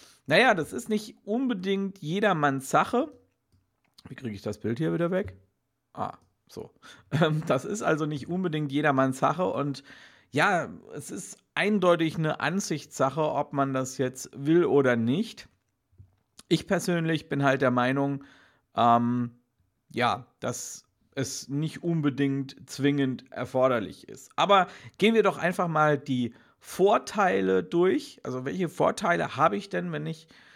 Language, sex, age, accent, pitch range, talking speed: German, male, 50-69, German, 130-165 Hz, 135 wpm